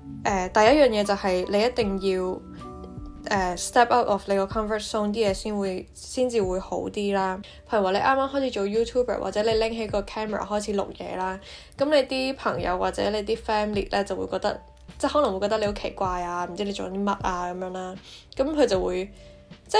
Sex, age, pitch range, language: female, 10-29, 185-225 Hz, Chinese